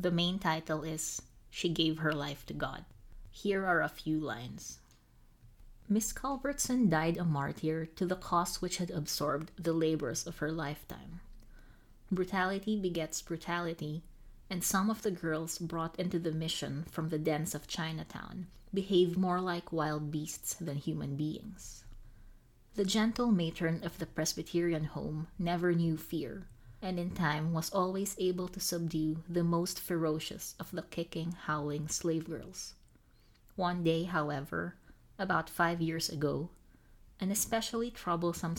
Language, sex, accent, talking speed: English, female, Filipino, 145 wpm